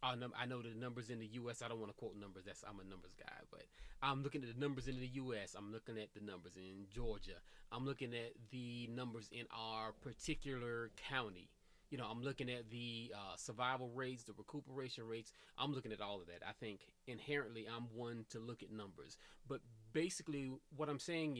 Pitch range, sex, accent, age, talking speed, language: 110-145 Hz, male, American, 20-39, 210 wpm, English